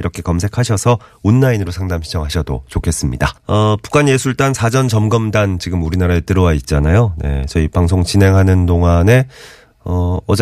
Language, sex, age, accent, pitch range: Korean, male, 30-49, native, 80-105 Hz